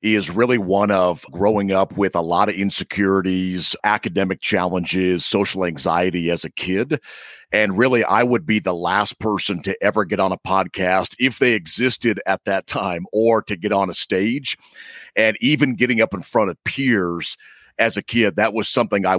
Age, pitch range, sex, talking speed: 40-59, 95-115 Hz, male, 185 wpm